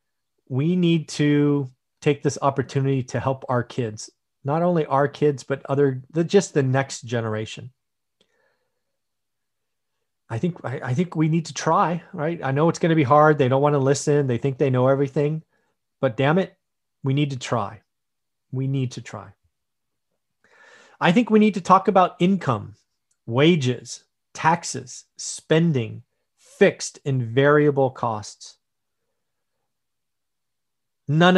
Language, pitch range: English, 125-155 Hz